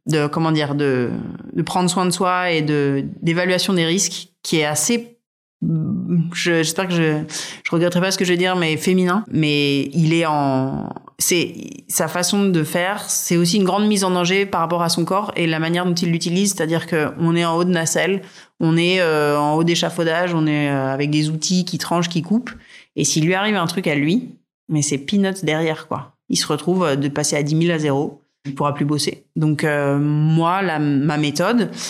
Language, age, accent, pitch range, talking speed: French, 30-49, French, 150-180 Hz, 215 wpm